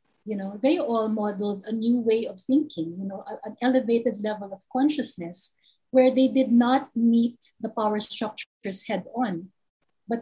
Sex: female